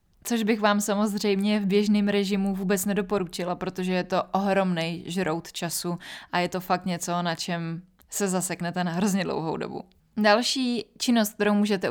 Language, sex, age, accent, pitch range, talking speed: Czech, female, 20-39, native, 180-200 Hz, 160 wpm